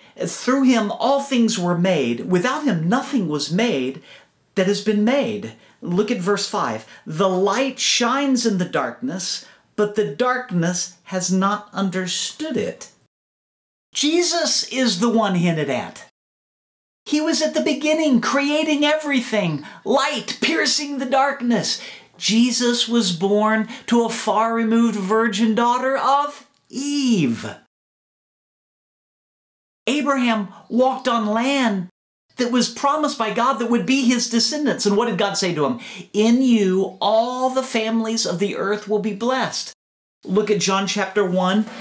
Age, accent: 50-69, American